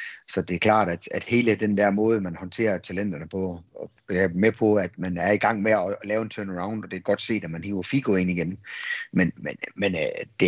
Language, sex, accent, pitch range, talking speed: Danish, male, native, 95-115 Hz, 250 wpm